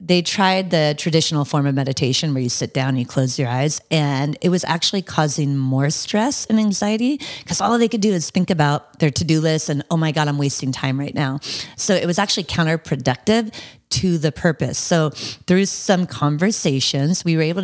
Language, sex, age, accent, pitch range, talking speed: English, female, 30-49, American, 145-185 Hz, 205 wpm